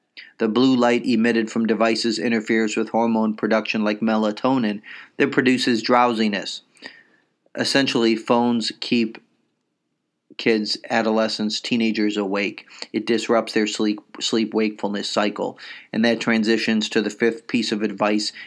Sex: male